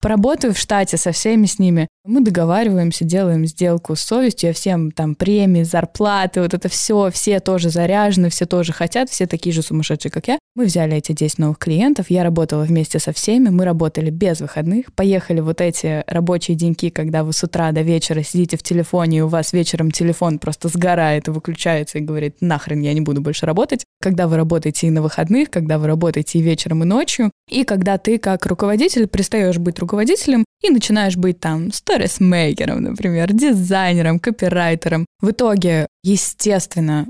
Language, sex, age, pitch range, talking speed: Russian, female, 10-29, 160-195 Hz, 180 wpm